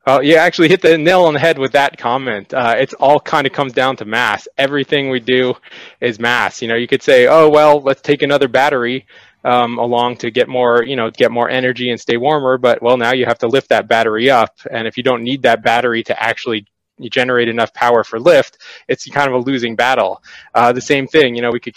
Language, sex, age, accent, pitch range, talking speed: English, male, 20-39, American, 115-130 Hz, 245 wpm